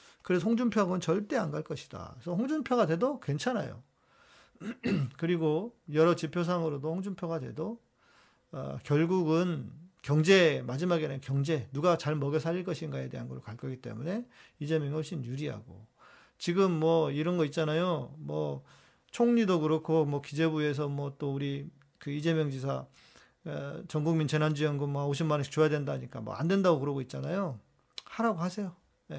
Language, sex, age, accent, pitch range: Korean, male, 40-59, native, 145-190 Hz